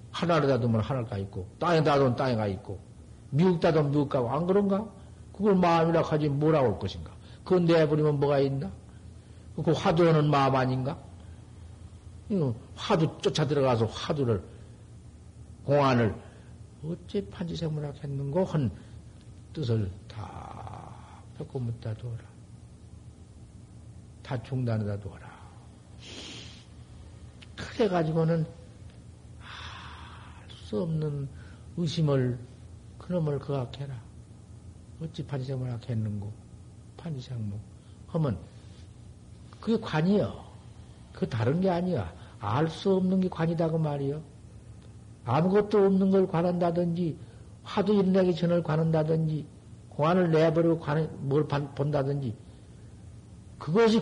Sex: male